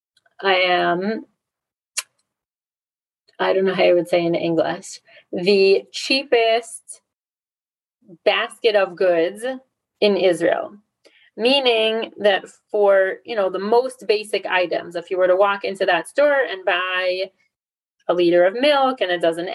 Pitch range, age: 185-225 Hz, 30-49